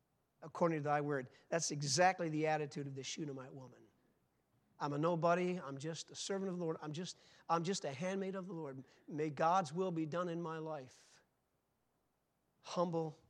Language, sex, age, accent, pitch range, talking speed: English, male, 50-69, American, 145-175 Hz, 175 wpm